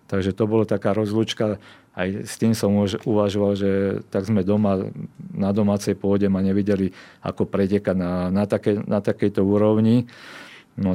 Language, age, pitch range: Slovak, 40-59, 95-110 Hz